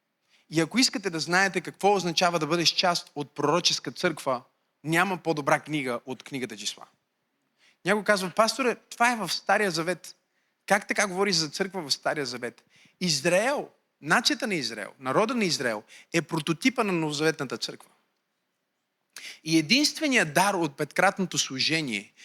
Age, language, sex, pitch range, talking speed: 30-49, Bulgarian, male, 155-210 Hz, 145 wpm